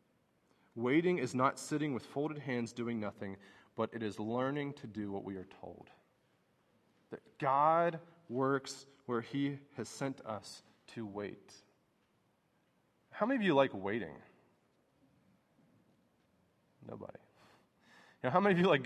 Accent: American